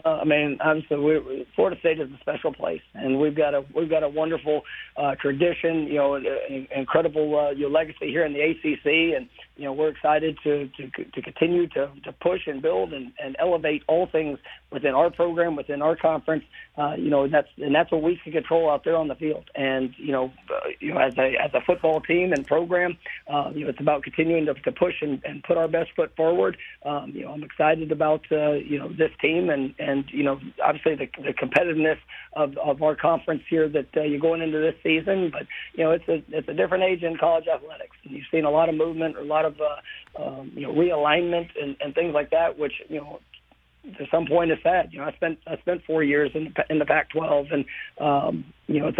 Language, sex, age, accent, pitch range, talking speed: English, male, 40-59, American, 145-165 Hz, 235 wpm